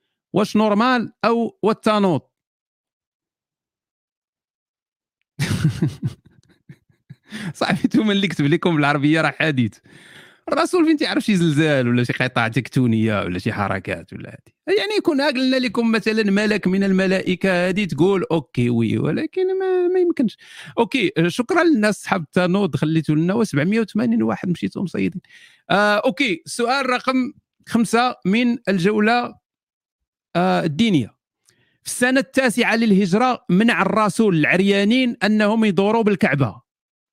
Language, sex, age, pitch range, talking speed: Arabic, male, 40-59, 150-225 Hz, 115 wpm